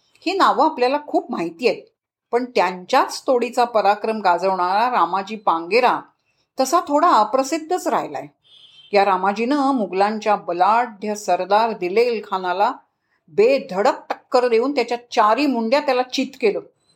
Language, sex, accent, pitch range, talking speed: Marathi, female, native, 200-280 Hz, 90 wpm